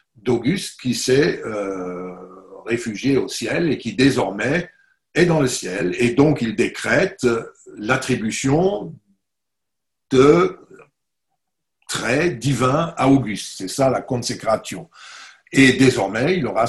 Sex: male